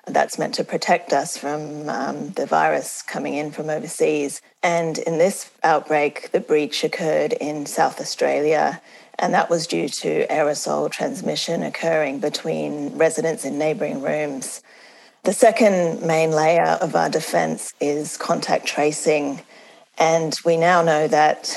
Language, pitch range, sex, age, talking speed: English, 150-180 Hz, female, 30-49, 140 wpm